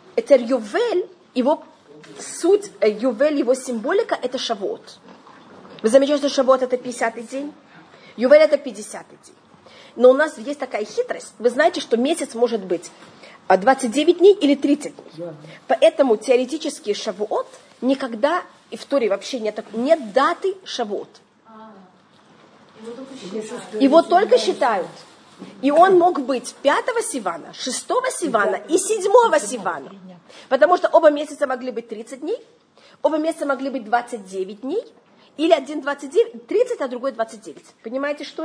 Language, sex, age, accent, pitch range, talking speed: Russian, female, 30-49, native, 235-315 Hz, 135 wpm